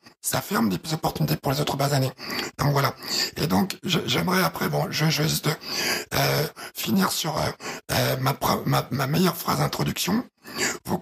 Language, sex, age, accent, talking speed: French, male, 60-79, French, 165 wpm